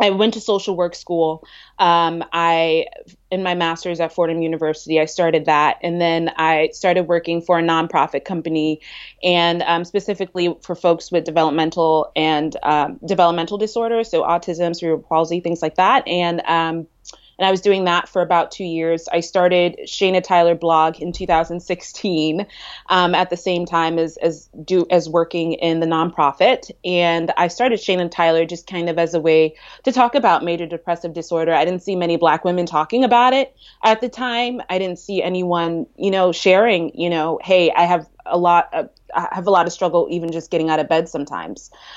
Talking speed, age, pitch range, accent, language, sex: 190 wpm, 20-39, 165-190 Hz, American, English, female